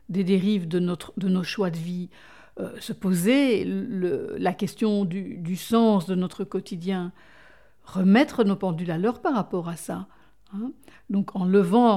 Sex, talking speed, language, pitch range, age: female, 170 wpm, French, 180-225 Hz, 60-79